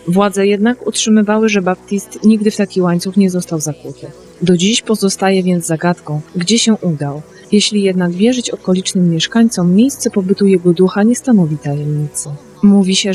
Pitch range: 175-210 Hz